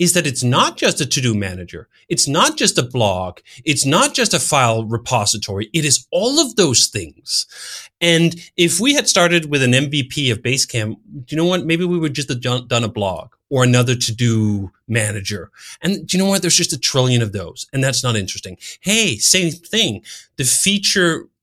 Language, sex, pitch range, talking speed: English, male, 115-175 Hz, 200 wpm